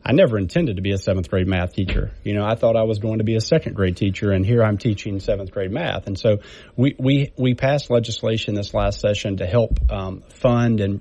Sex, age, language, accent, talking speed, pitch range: male, 40-59, English, American, 245 wpm, 105-120 Hz